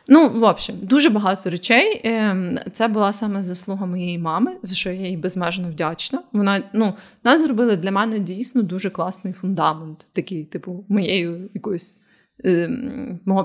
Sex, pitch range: female, 180-230 Hz